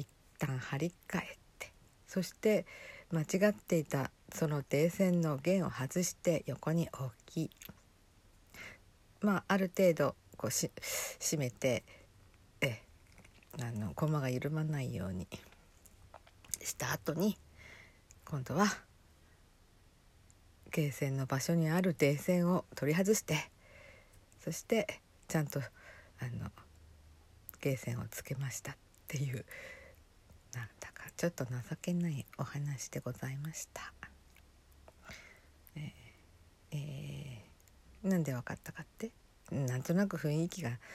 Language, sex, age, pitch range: Japanese, female, 60-79, 100-165 Hz